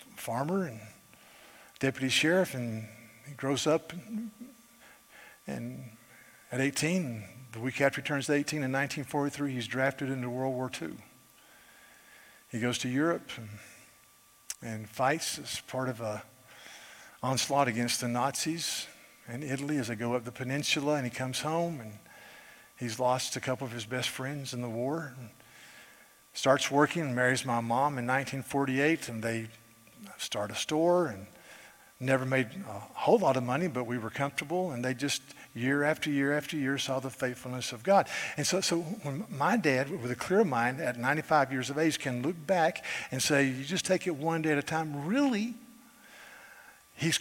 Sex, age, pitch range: male, 50-69, 125-170 Hz